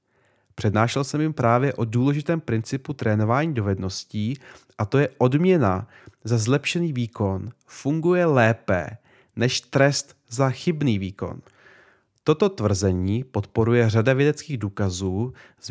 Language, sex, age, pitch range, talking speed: Czech, male, 30-49, 105-145 Hz, 115 wpm